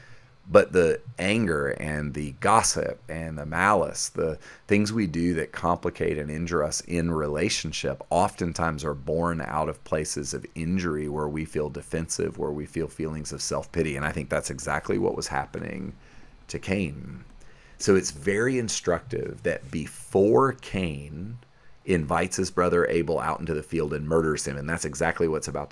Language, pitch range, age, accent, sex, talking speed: English, 75-95 Hz, 40-59, American, male, 165 wpm